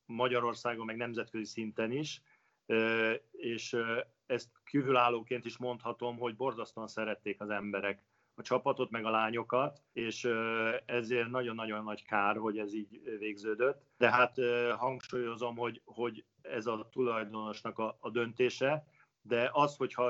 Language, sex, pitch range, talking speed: Hungarian, male, 105-125 Hz, 120 wpm